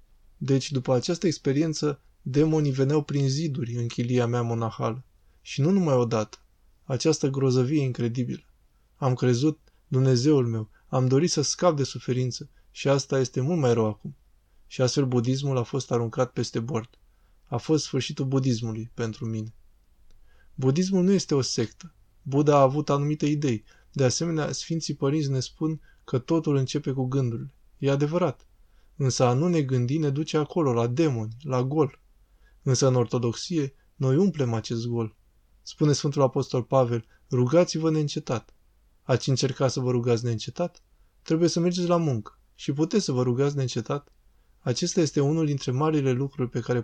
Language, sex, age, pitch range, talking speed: Romanian, male, 20-39, 120-150 Hz, 160 wpm